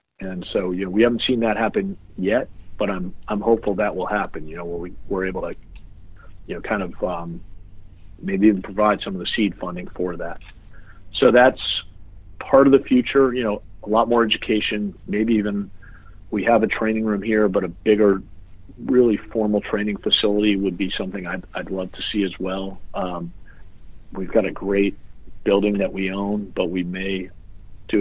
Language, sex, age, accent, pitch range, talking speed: English, male, 40-59, American, 90-105 Hz, 190 wpm